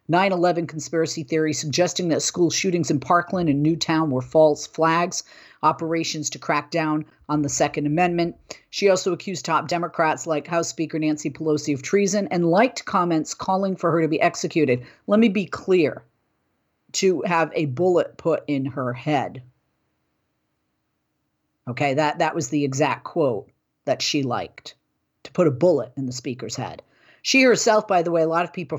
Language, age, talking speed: English, 40-59, 170 wpm